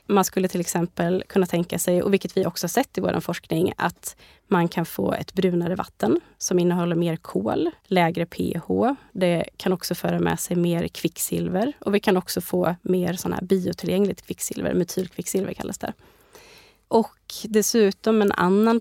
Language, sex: Swedish, female